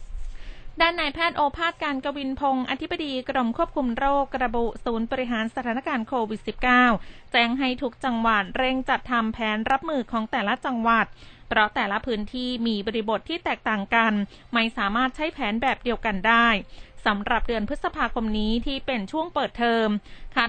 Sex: female